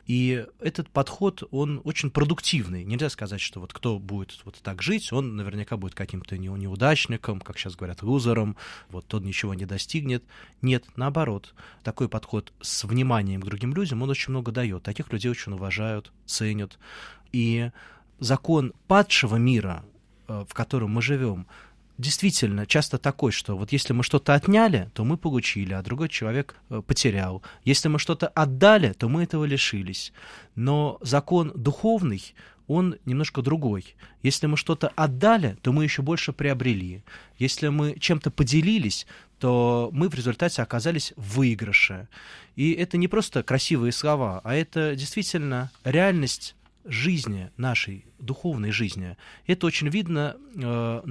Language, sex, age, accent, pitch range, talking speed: Russian, male, 20-39, native, 110-150 Hz, 145 wpm